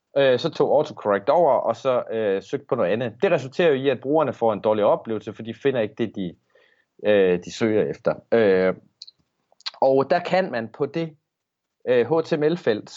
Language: Danish